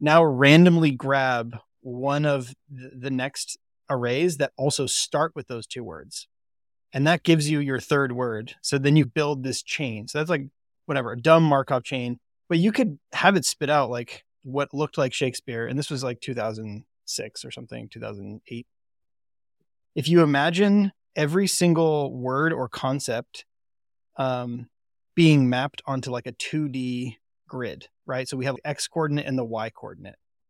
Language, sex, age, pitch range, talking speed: English, male, 20-39, 125-150 Hz, 160 wpm